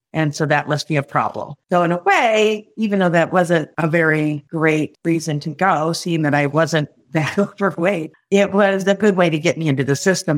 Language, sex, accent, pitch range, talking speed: English, female, American, 145-175 Hz, 220 wpm